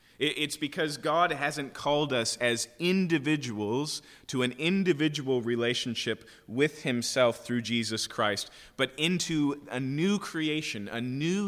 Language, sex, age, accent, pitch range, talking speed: English, male, 30-49, American, 120-155 Hz, 125 wpm